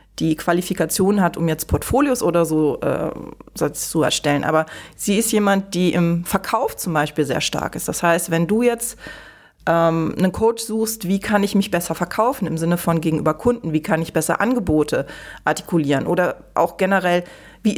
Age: 30-49